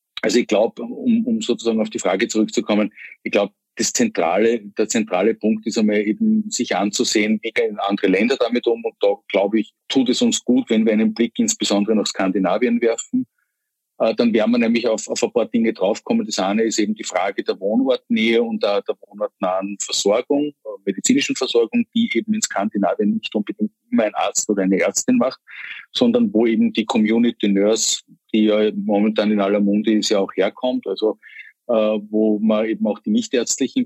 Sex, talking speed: male, 185 wpm